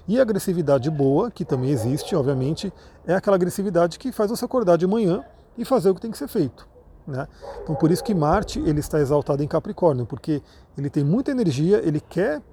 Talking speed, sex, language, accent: 205 wpm, male, Portuguese, Brazilian